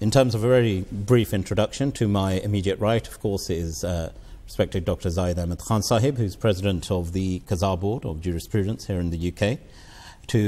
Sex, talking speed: male, 195 wpm